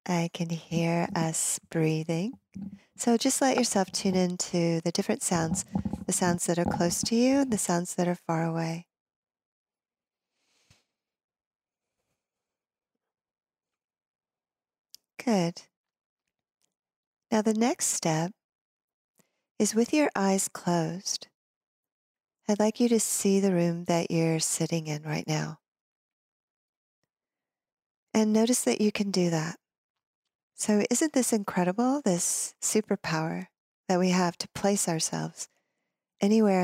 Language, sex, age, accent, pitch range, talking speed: English, female, 40-59, American, 170-210 Hz, 120 wpm